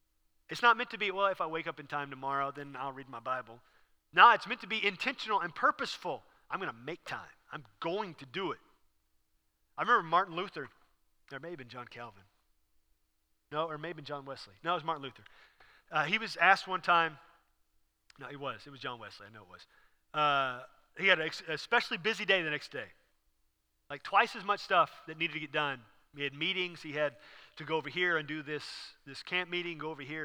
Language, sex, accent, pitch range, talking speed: English, male, American, 135-165 Hz, 225 wpm